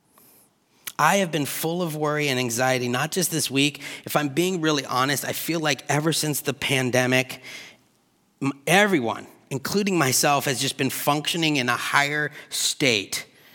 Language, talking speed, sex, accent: English, 155 wpm, male, American